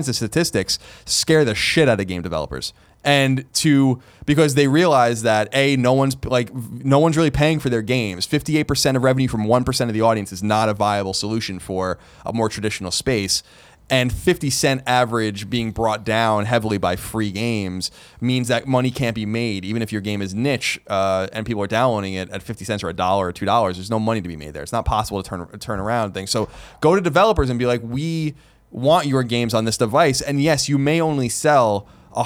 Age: 20-39